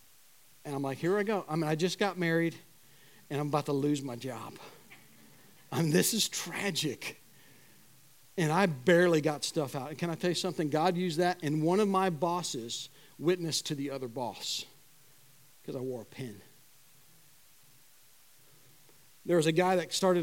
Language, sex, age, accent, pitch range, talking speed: English, male, 50-69, American, 145-180 Hz, 175 wpm